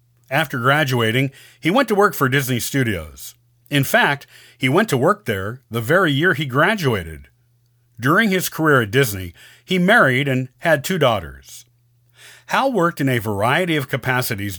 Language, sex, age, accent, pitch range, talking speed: English, male, 40-59, American, 120-160 Hz, 160 wpm